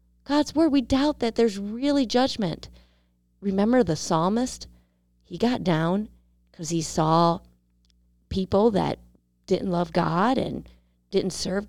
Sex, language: female, English